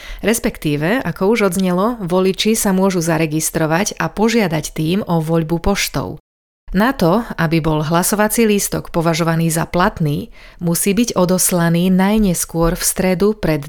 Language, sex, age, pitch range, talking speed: Slovak, female, 30-49, 165-205 Hz, 130 wpm